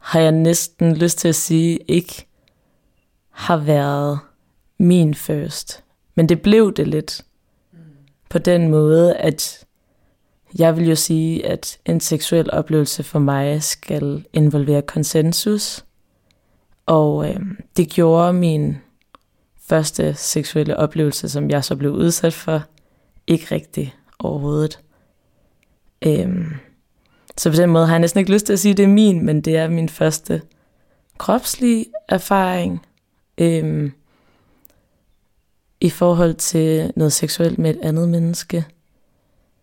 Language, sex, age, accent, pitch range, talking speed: Danish, female, 20-39, native, 145-170 Hz, 130 wpm